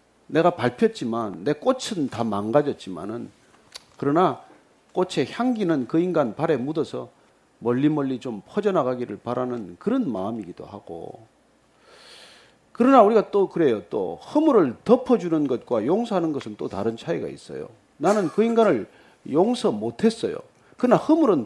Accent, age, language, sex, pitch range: native, 40-59, Korean, male, 150-245 Hz